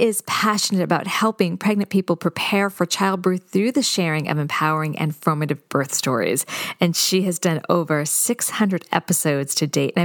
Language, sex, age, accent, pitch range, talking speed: English, female, 40-59, American, 170-225 Hz, 165 wpm